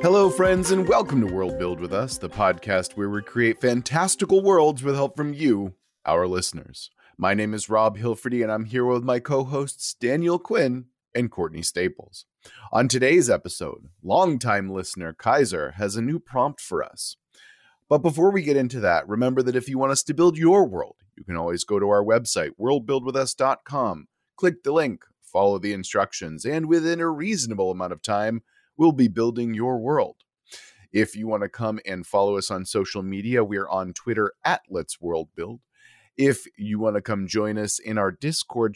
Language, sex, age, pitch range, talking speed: English, male, 30-49, 100-135 Hz, 185 wpm